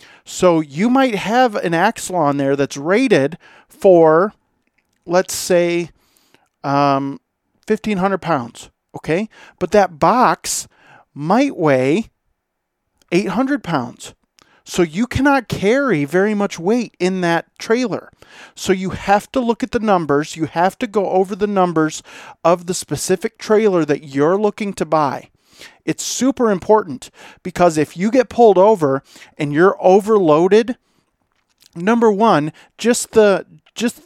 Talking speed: 130 wpm